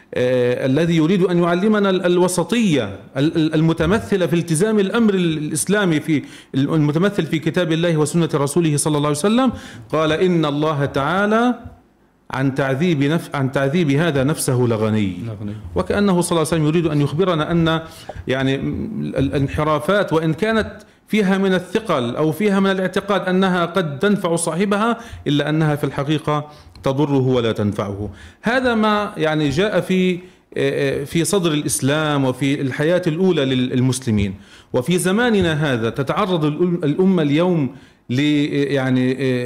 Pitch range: 140-185 Hz